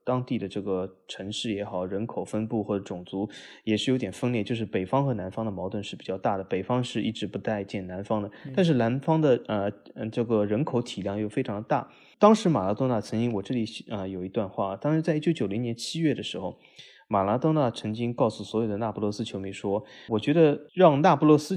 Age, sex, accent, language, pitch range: 20-39, male, native, Chinese, 105-135 Hz